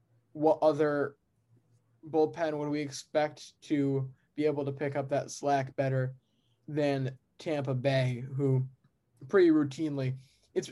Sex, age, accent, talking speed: male, 20-39, American, 125 wpm